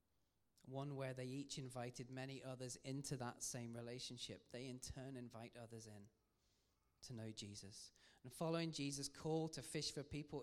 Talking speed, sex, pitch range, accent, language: 160 wpm, male, 115-140 Hz, British, English